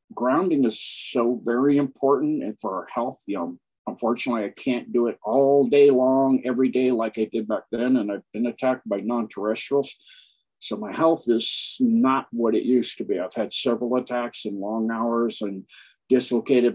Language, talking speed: English, 185 wpm